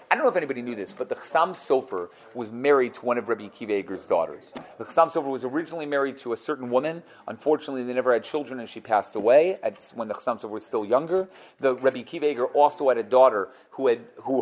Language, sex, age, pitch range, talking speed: English, male, 40-59, 125-160 Hz, 230 wpm